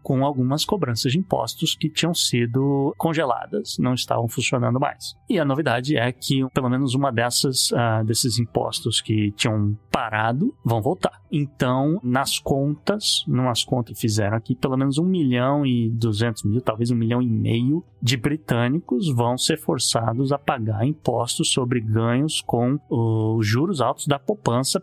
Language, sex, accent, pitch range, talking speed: Portuguese, male, Brazilian, 120-165 Hz, 155 wpm